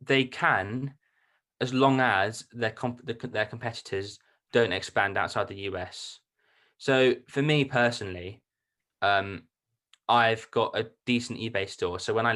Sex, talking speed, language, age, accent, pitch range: male, 135 wpm, English, 20-39, British, 100-120 Hz